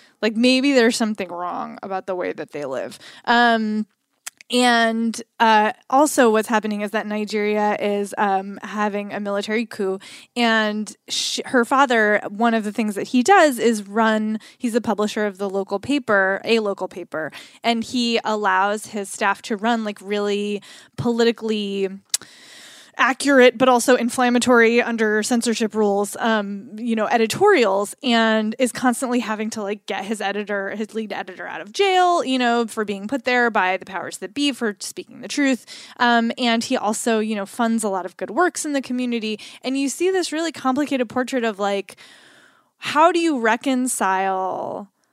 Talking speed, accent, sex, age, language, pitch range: 170 wpm, American, female, 20-39, English, 200-245 Hz